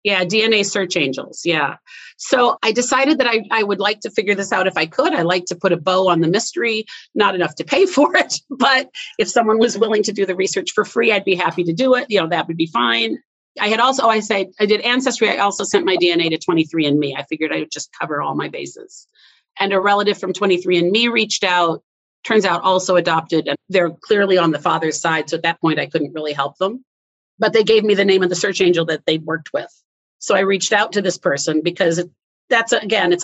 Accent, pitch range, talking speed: American, 165-205 Hz, 245 wpm